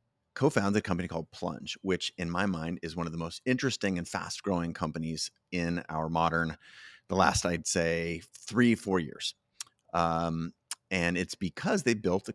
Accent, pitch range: American, 80-95 Hz